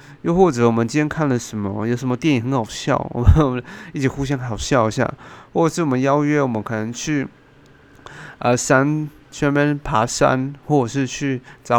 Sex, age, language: male, 30-49, Chinese